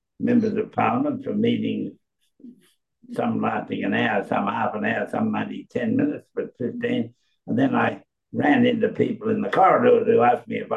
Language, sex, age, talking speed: English, male, 60-79, 180 wpm